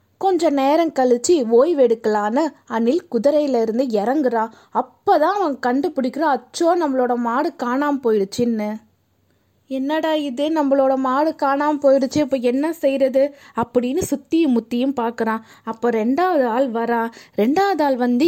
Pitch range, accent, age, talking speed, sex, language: 240-305 Hz, native, 20-39, 120 wpm, female, Tamil